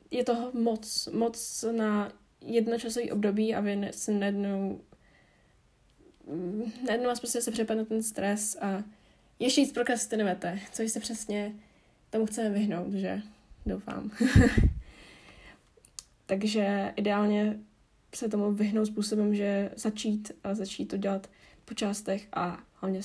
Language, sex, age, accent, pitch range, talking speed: Czech, female, 10-29, native, 200-230 Hz, 110 wpm